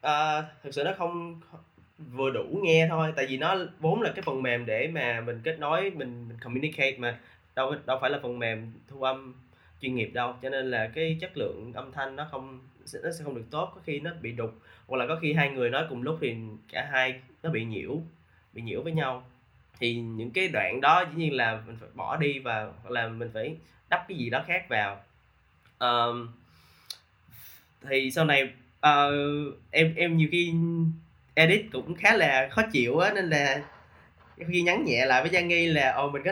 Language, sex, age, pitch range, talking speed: Vietnamese, male, 10-29, 120-160 Hz, 210 wpm